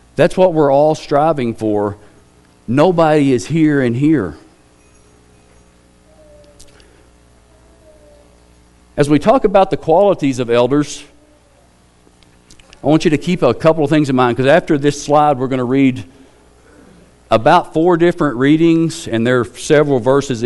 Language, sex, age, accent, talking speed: English, male, 50-69, American, 140 wpm